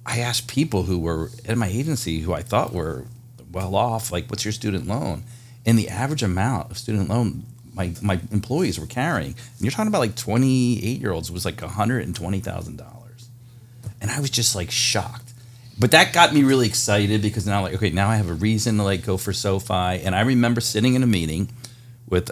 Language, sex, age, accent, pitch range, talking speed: English, male, 40-59, American, 95-120 Hz, 205 wpm